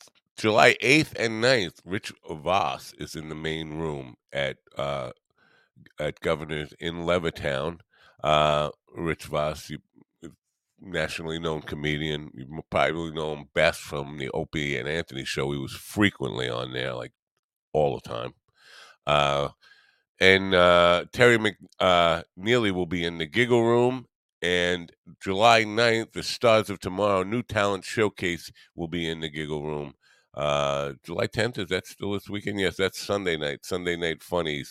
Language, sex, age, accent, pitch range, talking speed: English, male, 50-69, American, 75-110 Hz, 150 wpm